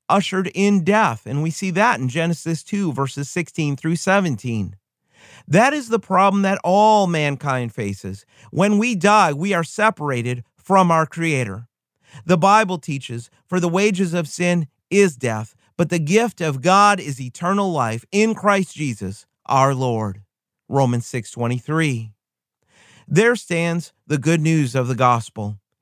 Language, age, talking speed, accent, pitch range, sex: English, 40-59, 150 wpm, American, 130-195 Hz, male